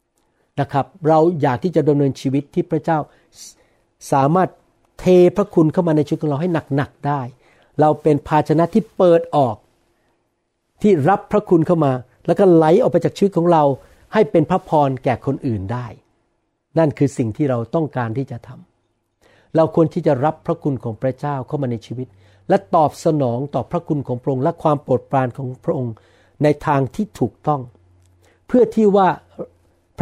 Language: Thai